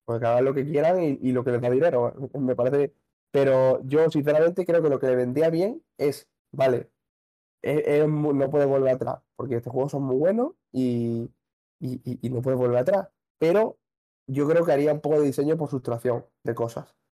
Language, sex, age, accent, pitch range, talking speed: Spanish, male, 20-39, Spanish, 130-175 Hz, 210 wpm